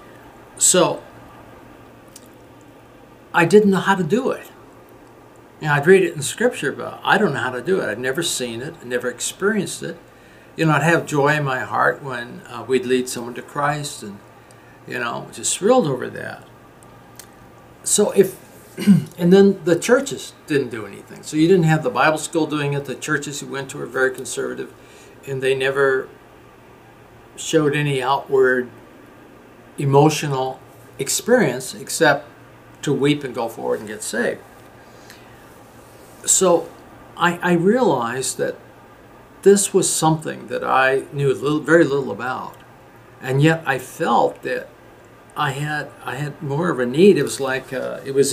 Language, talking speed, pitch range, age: English, 160 wpm, 130-170 Hz, 60-79